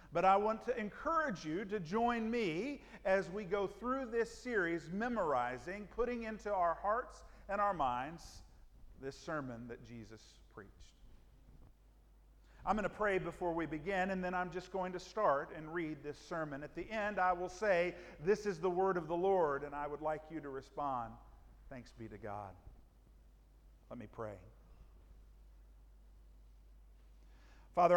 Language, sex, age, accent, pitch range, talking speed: English, male, 50-69, American, 125-185 Hz, 160 wpm